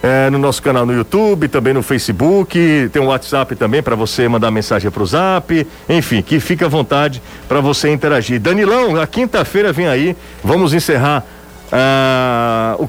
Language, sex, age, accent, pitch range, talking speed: Portuguese, male, 50-69, Brazilian, 120-150 Hz, 170 wpm